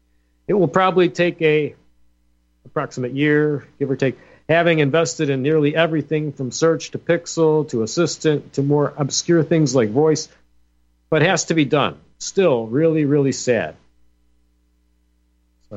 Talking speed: 145 wpm